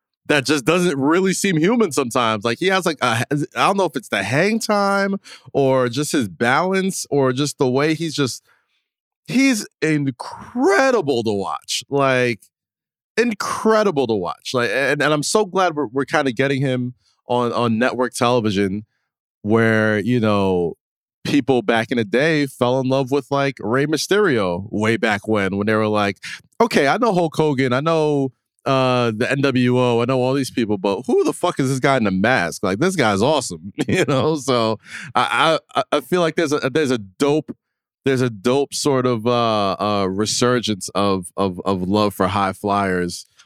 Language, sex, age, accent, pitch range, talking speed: English, male, 20-39, American, 105-145 Hz, 185 wpm